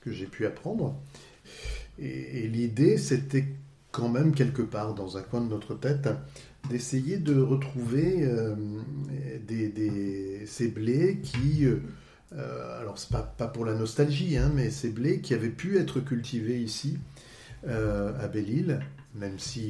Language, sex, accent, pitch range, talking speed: French, male, French, 105-140 Hz, 145 wpm